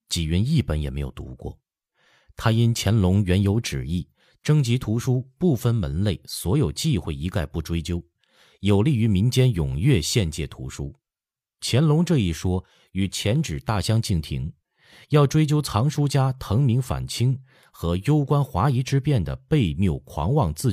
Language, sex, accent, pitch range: Chinese, male, native, 85-125 Hz